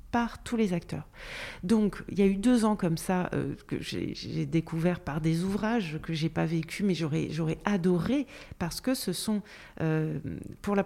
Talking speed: 205 wpm